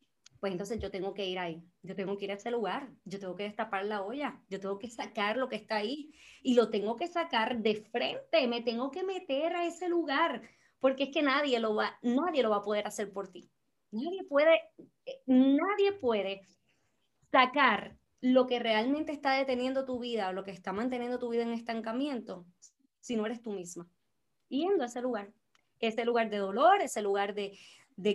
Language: Spanish